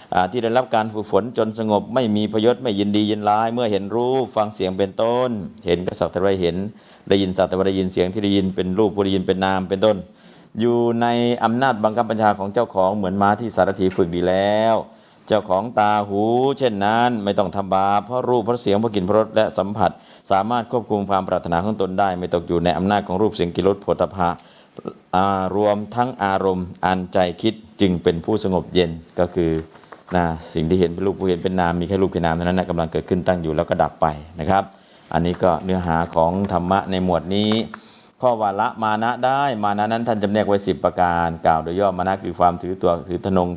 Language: Thai